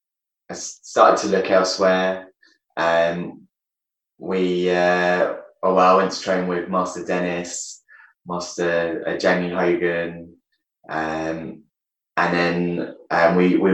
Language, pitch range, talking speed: English, 80-95 Hz, 120 wpm